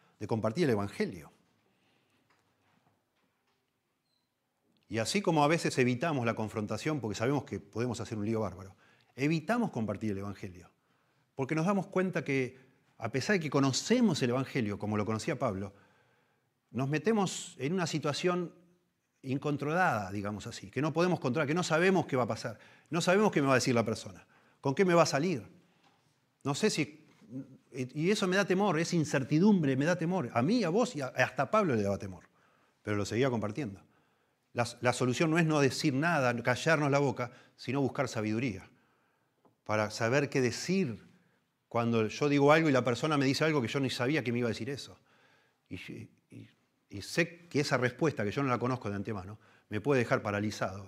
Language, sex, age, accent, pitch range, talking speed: Spanish, male, 40-59, Argentinian, 110-155 Hz, 185 wpm